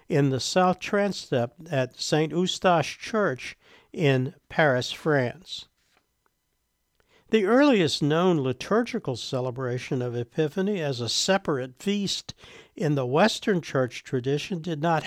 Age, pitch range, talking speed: 60-79, 135-180 Hz, 115 wpm